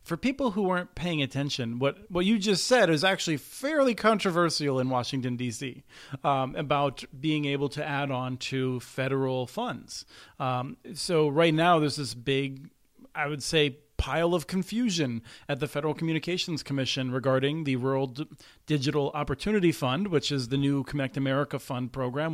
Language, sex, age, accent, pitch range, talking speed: English, male, 40-59, American, 135-170 Hz, 165 wpm